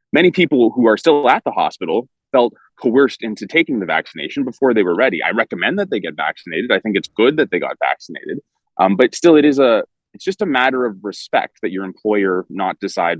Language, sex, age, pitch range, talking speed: English, male, 30-49, 105-145 Hz, 230 wpm